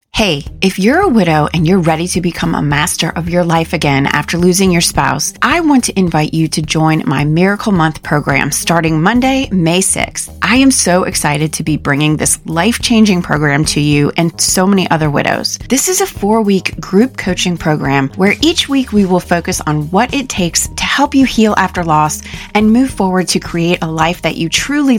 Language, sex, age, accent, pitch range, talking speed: English, female, 30-49, American, 160-205 Hz, 210 wpm